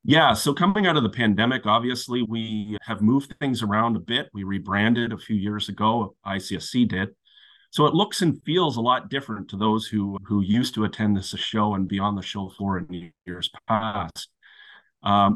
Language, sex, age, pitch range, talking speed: English, male, 30-49, 100-120 Hz, 195 wpm